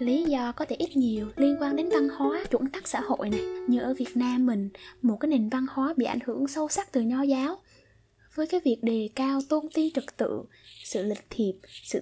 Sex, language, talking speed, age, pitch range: female, Vietnamese, 235 wpm, 10-29, 240-320 Hz